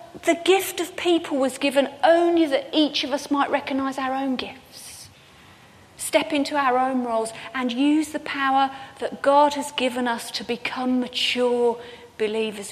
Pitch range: 230-285 Hz